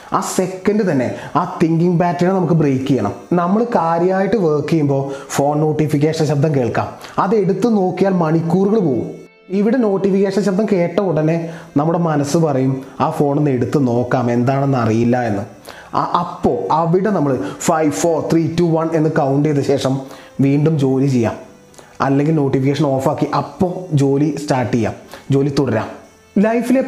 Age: 30-49